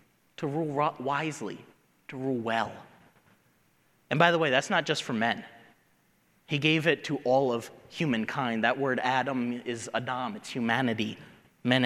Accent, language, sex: American, English, male